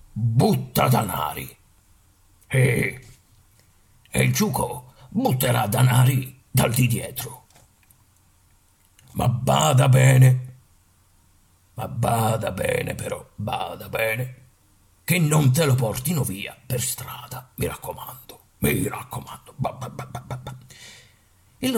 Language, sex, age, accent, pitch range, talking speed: Italian, male, 50-69, native, 105-145 Hz, 105 wpm